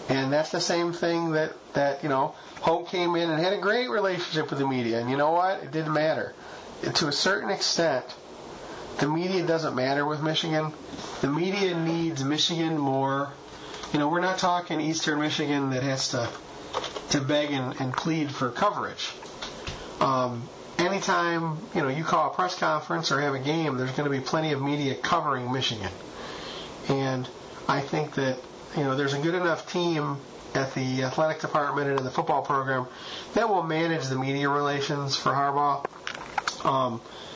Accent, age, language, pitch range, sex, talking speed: American, 30-49, English, 135-165 Hz, male, 180 wpm